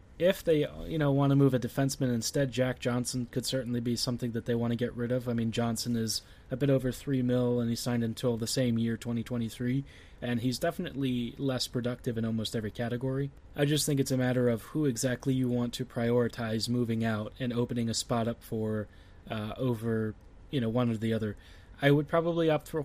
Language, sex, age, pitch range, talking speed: English, male, 20-39, 115-140 Hz, 220 wpm